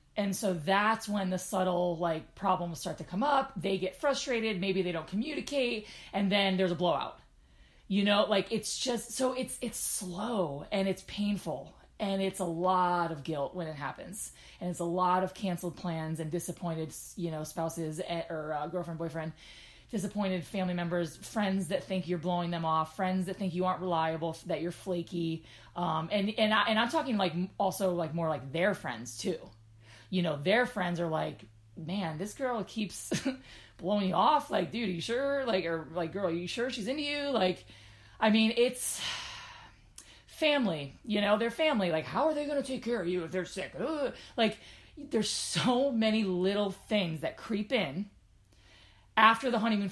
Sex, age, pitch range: female, 20-39, 165-210 Hz